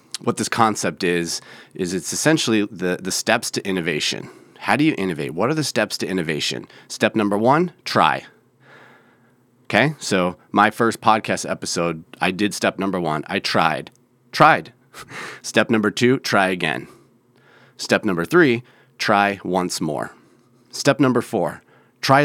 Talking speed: 150 wpm